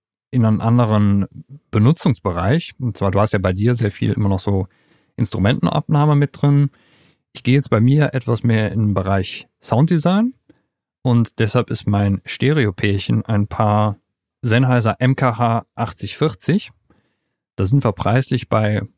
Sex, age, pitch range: male, 40-59, 105-130 Hz